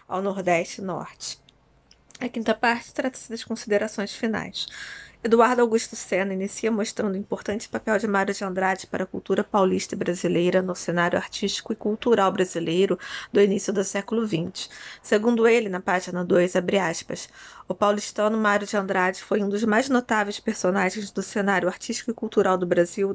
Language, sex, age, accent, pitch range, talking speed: Portuguese, female, 20-39, Brazilian, 190-225 Hz, 170 wpm